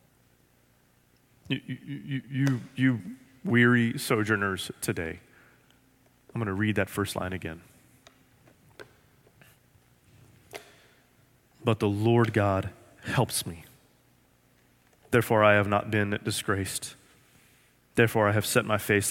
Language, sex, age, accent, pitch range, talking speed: English, male, 30-49, American, 95-115 Hz, 105 wpm